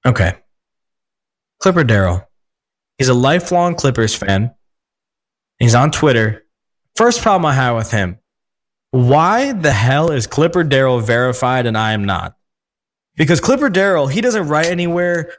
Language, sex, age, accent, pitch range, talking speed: English, male, 20-39, American, 125-185 Hz, 135 wpm